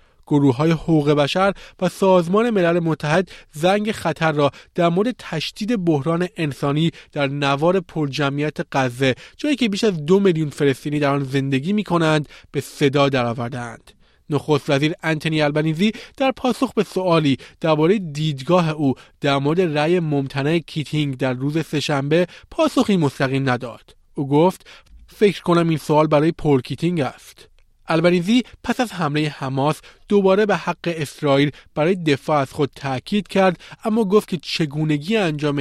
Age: 30-49